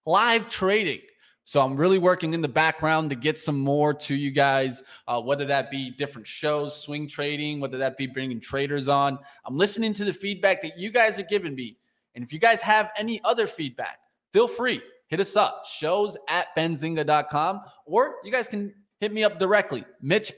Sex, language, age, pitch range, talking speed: male, English, 20-39, 140-200 Hz, 195 wpm